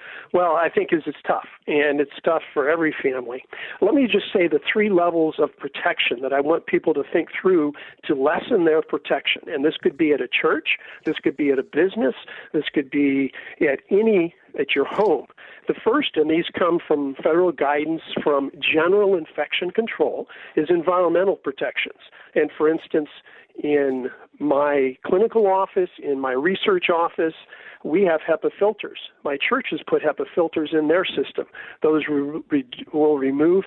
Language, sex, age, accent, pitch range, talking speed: English, male, 50-69, American, 145-195 Hz, 170 wpm